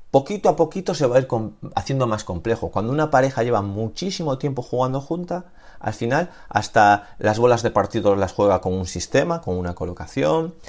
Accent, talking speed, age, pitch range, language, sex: Spanish, 185 wpm, 30-49, 100-150 Hz, Spanish, male